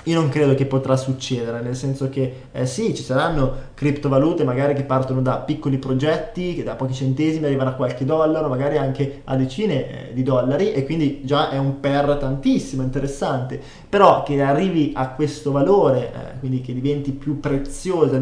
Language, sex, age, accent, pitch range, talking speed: Italian, male, 20-39, native, 130-150 Hz, 180 wpm